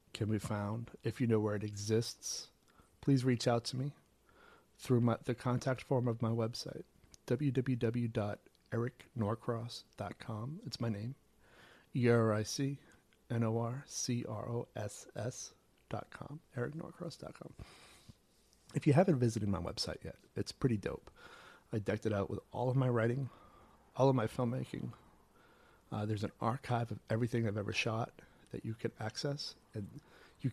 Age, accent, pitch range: 40-59, American, 105-125 Hz